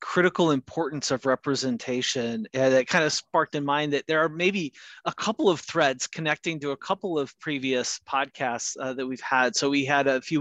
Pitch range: 130-160 Hz